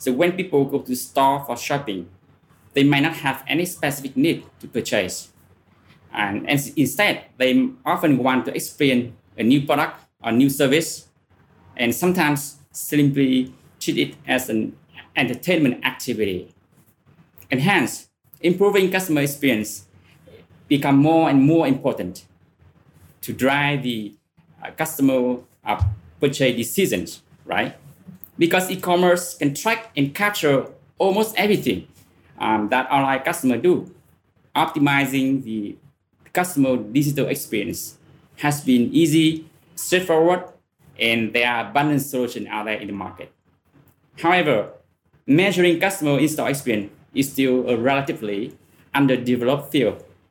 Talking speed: 120 wpm